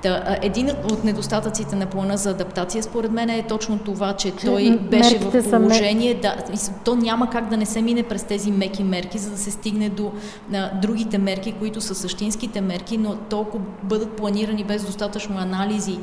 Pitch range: 195-225 Hz